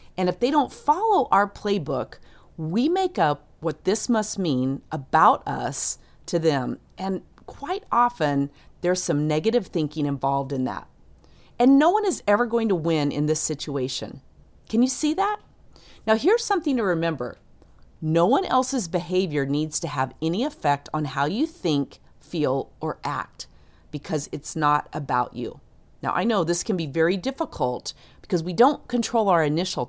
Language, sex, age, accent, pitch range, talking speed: English, female, 40-59, American, 145-220 Hz, 165 wpm